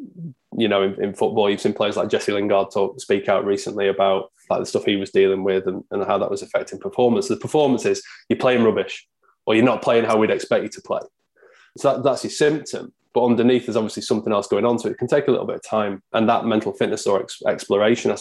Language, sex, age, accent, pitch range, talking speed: English, male, 20-39, British, 100-125 Hz, 255 wpm